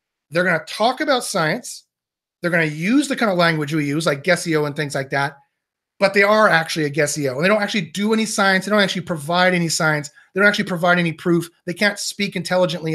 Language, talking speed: English, 225 wpm